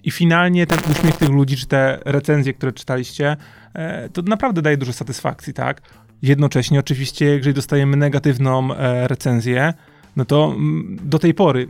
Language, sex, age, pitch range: Polish, male, 30-49, 135-170 Hz